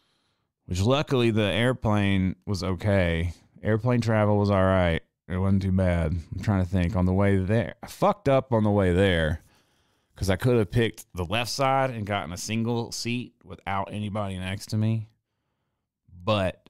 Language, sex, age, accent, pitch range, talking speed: English, male, 30-49, American, 90-110 Hz, 175 wpm